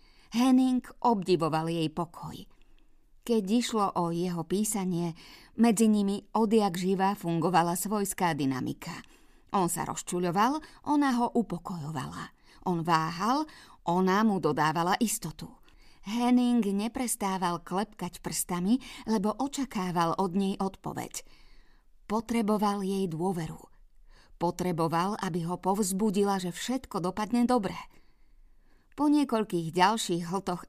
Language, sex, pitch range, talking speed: Slovak, female, 175-220 Hz, 100 wpm